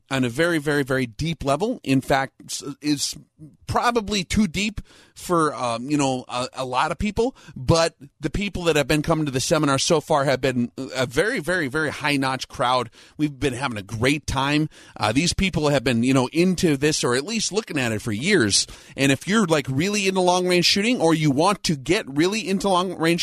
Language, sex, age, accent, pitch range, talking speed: English, male, 30-49, American, 130-165 Hz, 210 wpm